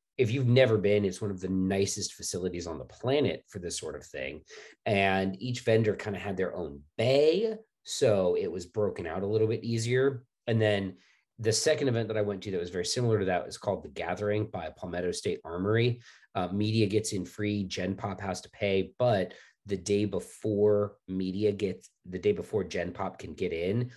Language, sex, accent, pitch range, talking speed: English, male, American, 95-115 Hz, 210 wpm